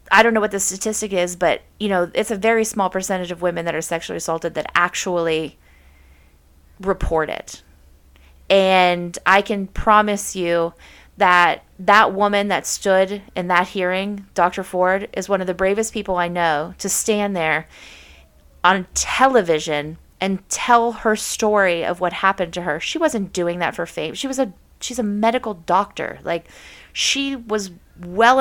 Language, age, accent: English, 30-49, American